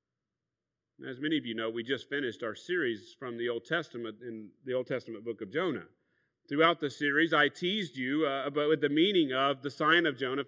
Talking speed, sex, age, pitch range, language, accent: 205 wpm, male, 40-59, 150-185 Hz, English, American